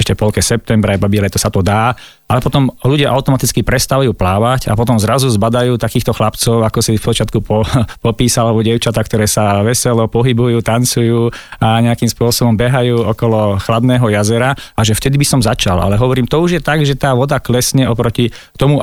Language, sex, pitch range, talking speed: Slovak, male, 105-120 Hz, 190 wpm